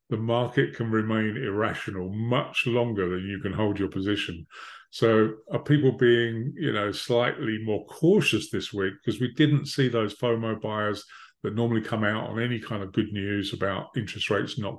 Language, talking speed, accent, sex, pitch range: English, 185 wpm, British, male, 115-145 Hz